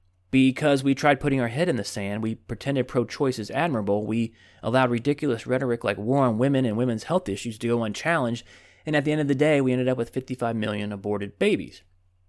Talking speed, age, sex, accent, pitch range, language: 215 wpm, 30-49, male, American, 95-130 Hz, English